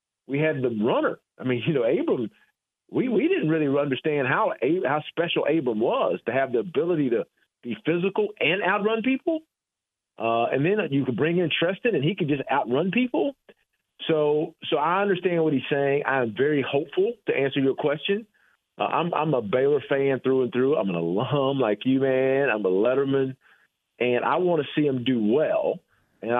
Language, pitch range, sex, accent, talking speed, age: English, 130-180 Hz, male, American, 190 wpm, 40-59